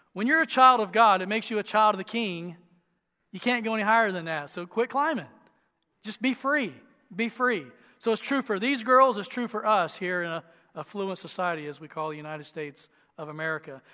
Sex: male